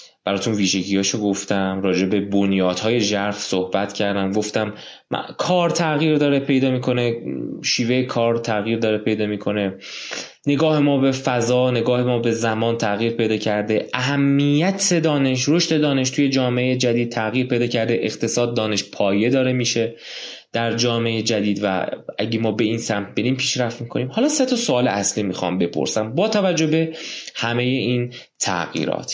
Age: 20-39